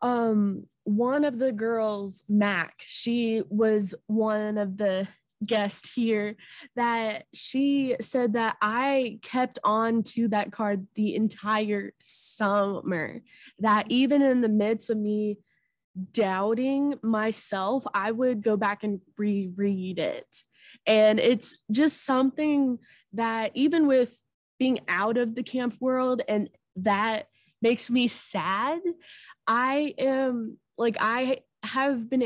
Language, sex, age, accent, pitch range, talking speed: English, female, 20-39, American, 210-250 Hz, 125 wpm